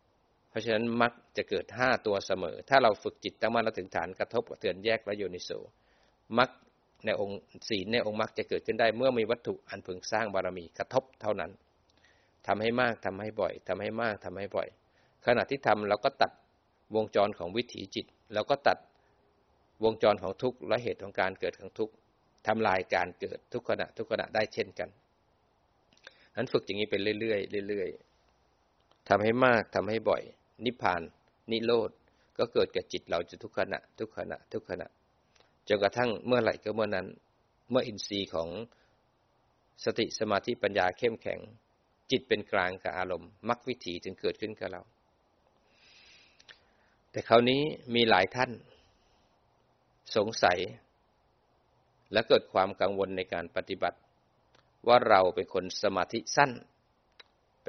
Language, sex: Thai, male